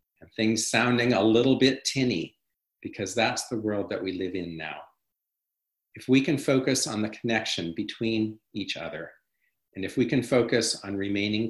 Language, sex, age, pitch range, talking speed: English, male, 50-69, 110-130 Hz, 165 wpm